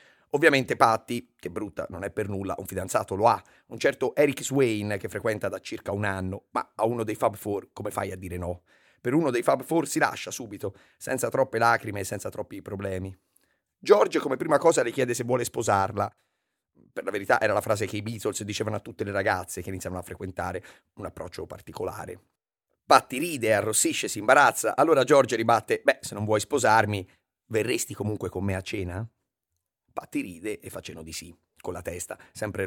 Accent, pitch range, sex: native, 100-135 Hz, male